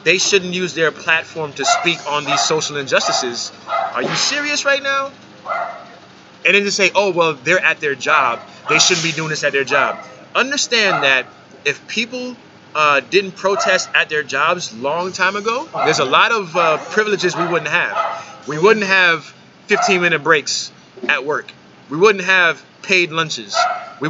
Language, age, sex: English, 30-49, male